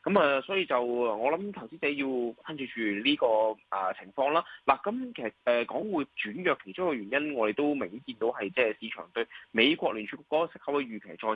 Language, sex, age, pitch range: Chinese, male, 20-39, 115-180 Hz